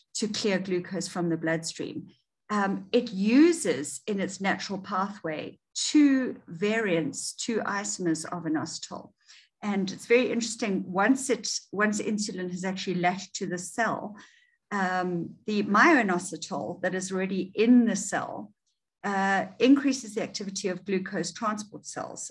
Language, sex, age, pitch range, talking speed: English, female, 50-69, 175-215 Hz, 135 wpm